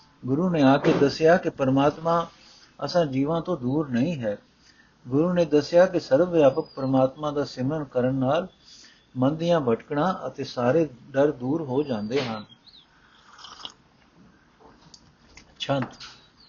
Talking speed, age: 125 wpm, 60-79